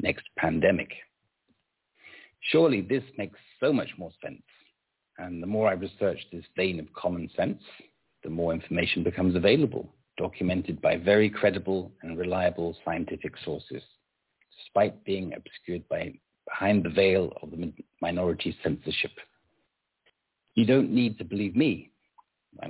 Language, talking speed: English, 130 wpm